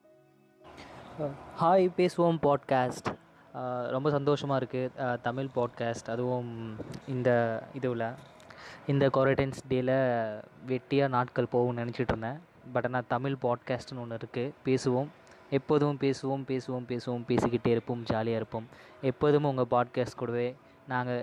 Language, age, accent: Tamil, 20-39, native